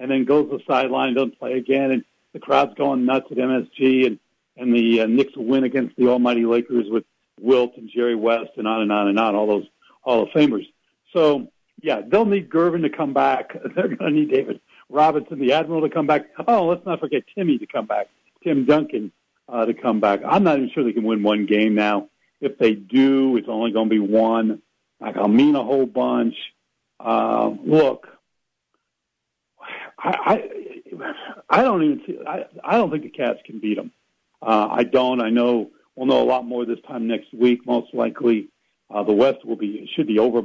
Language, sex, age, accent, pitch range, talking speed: English, male, 70-89, American, 115-145 Hz, 210 wpm